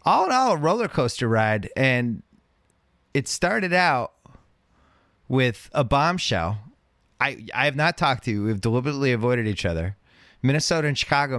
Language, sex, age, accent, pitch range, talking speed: English, male, 30-49, American, 110-165 Hz, 160 wpm